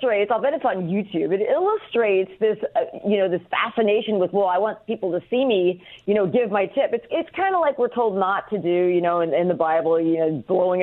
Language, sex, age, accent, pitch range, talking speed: English, female, 40-59, American, 175-245 Hz, 250 wpm